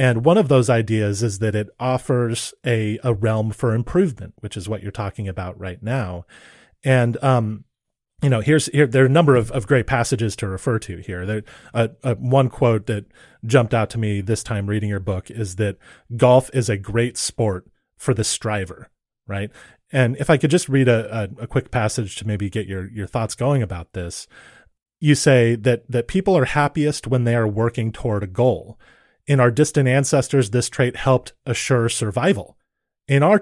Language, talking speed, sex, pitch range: English, 200 wpm, male, 110-135 Hz